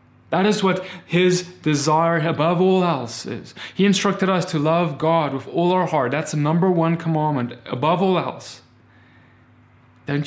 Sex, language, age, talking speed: male, English, 20-39, 165 wpm